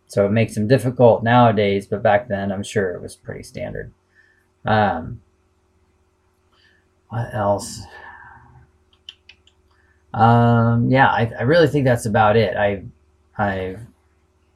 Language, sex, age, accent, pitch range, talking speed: English, male, 30-49, American, 95-110 Hz, 120 wpm